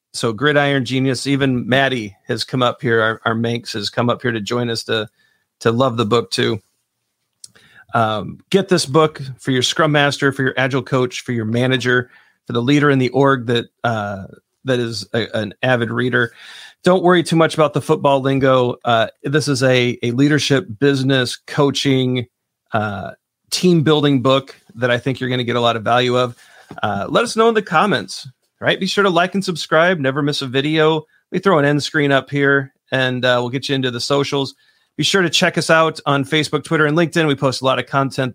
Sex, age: male, 40-59